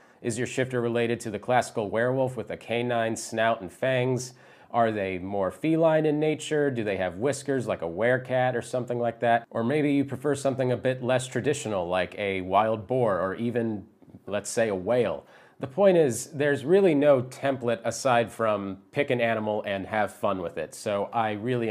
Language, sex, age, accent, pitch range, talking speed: English, male, 30-49, American, 105-135 Hz, 195 wpm